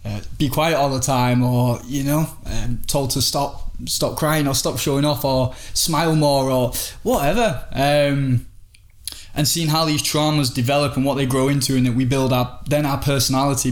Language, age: English, 20-39